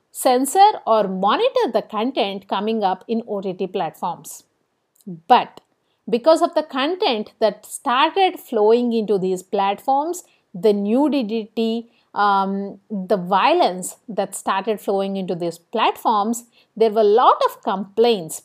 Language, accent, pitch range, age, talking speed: English, Indian, 205-275 Hz, 50-69, 125 wpm